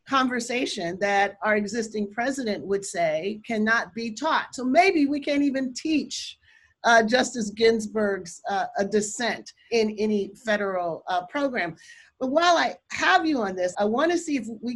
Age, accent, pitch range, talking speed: 40-59, American, 210-285 Hz, 160 wpm